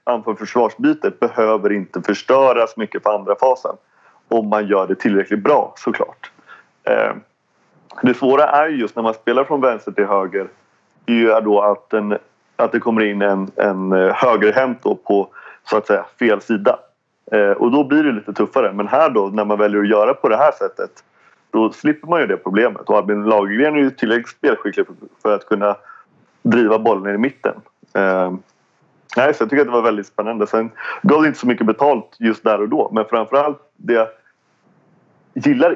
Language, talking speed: English, 185 wpm